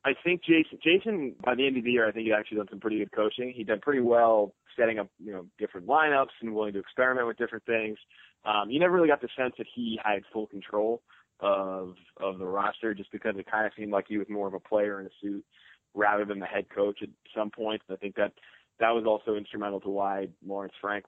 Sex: male